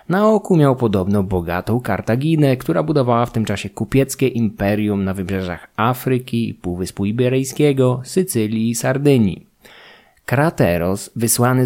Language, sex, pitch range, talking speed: Polish, male, 100-130 Hz, 125 wpm